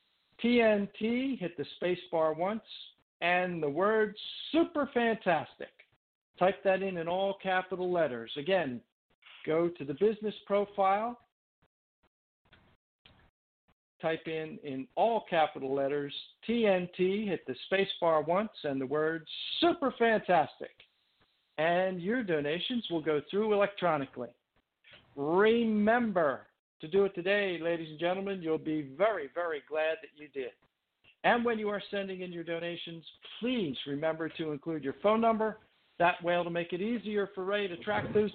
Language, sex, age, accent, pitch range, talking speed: English, male, 50-69, American, 160-210 Hz, 140 wpm